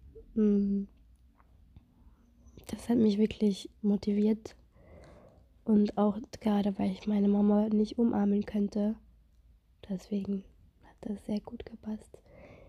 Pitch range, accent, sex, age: 200-215 Hz, German, female, 20-39